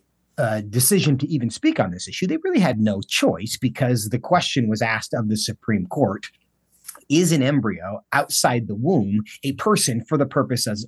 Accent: American